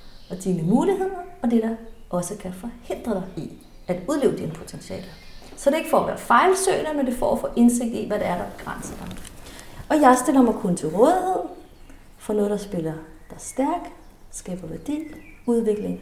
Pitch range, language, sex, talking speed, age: 190-275 Hz, Danish, female, 200 wpm, 30-49